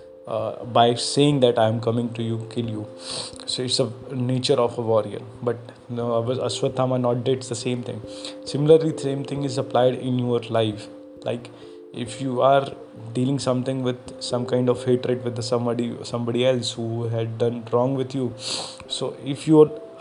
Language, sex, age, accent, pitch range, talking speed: Hindi, male, 20-39, native, 115-130 Hz, 185 wpm